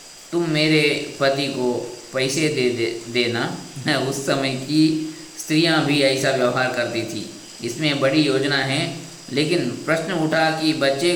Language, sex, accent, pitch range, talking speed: Kannada, male, native, 130-160 Hz, 135 wpm